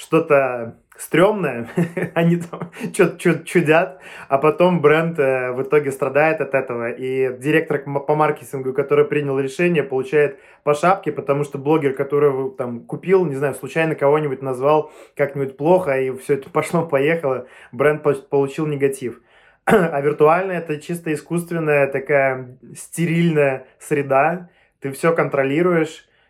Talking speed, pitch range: 125 wpm, 135-165 Hz